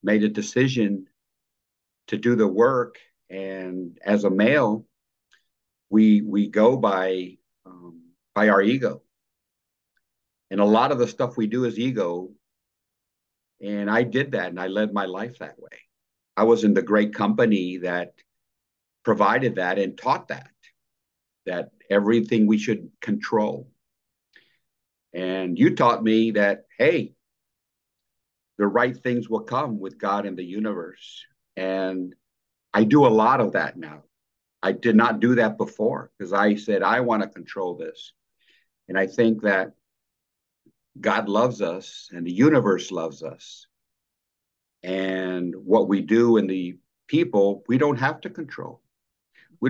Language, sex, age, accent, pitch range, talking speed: English, male, 50-69, American, 95-115 Hz, 145 wpm